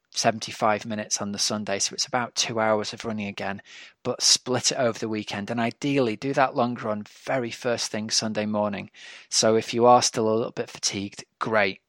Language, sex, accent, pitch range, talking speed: English, male, British, 105-120 Hz, 200 wpm